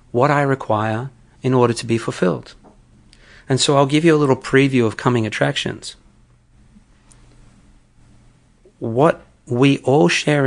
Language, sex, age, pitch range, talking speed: English, male, 40-59, 110-140 Hz, 130 wpm